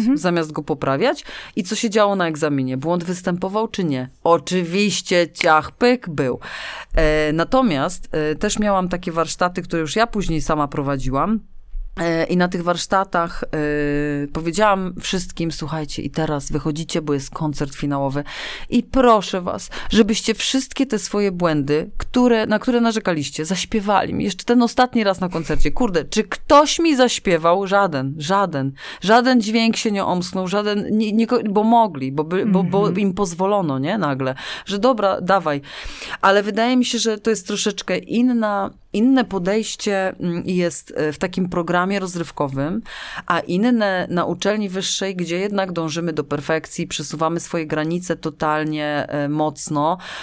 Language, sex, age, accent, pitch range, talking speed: Polish, female, 30-49, native, 155-205 Hz, 145 wpm